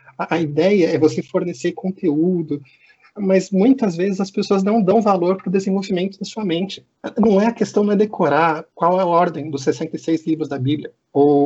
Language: Portuguese